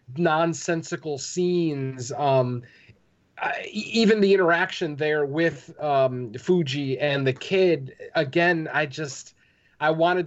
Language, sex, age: English, male, 30-49